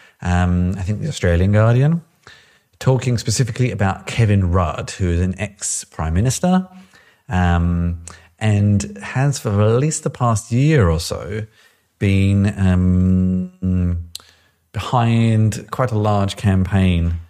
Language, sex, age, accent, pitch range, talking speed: English, male, 30-49, British, 85-105 Hz, 120 wpm